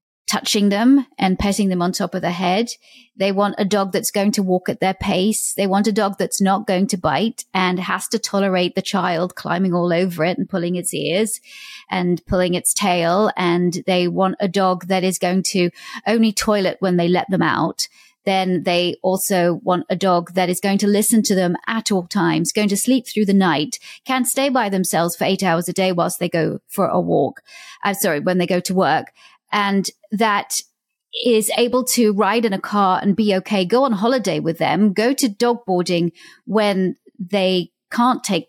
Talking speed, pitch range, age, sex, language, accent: 205 wpm, 185-235 Hz, 30-49, female, English, British